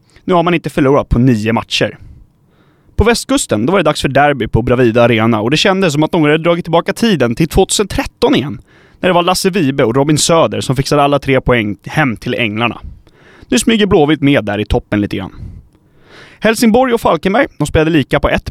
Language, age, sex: Swedish, 30-49, male